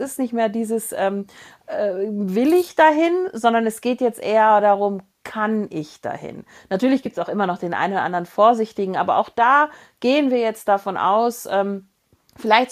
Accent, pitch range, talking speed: German, 190-250 Hz, 185 wpm